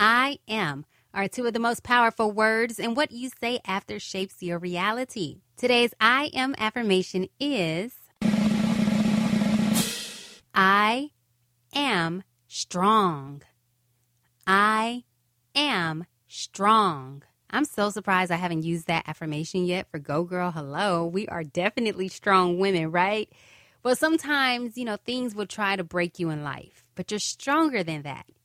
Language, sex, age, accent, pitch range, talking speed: English, female, 20-39, American, 170-235 Hz, 135 wpm